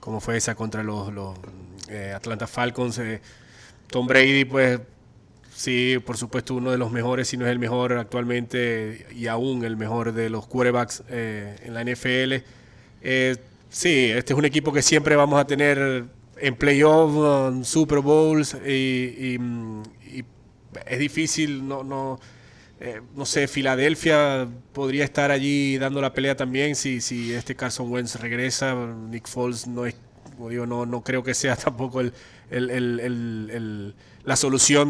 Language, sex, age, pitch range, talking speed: English, male, 20-39, 120-135 Hz, 165 wpm